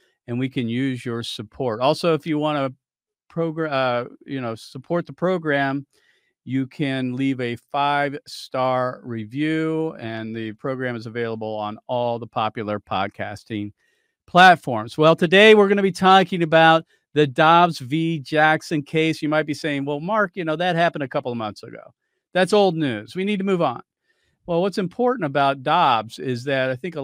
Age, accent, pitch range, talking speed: 50-69, American, 125-160 Hz, 180 wpm